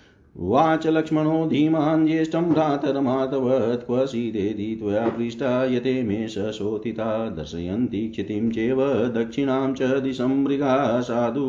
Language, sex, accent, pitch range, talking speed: Hindi, male, native, 110-135 Hz, 85 wpm